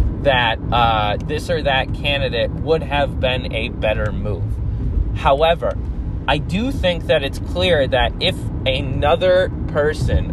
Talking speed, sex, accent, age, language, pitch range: 135 wpm, male, American, 20-39, English, 105-140 Hz